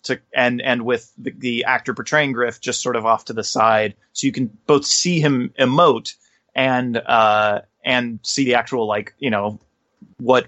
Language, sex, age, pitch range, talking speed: English, male, 30-49, 110-140 Hz, 190 wpm